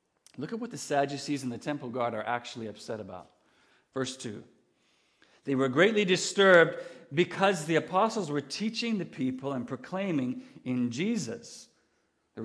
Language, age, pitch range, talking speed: English, 50-69, 130-190 Hz, 150 wpm